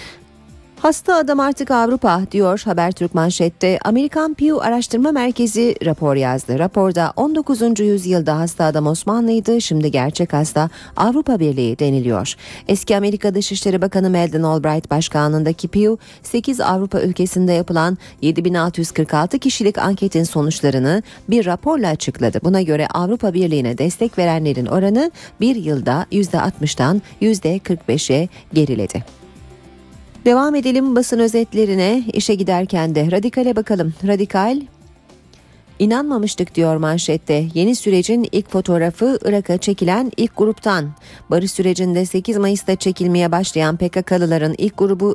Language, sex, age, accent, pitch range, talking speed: Turkish, female, 40-59, native, 155-210 Hz, 115 wpm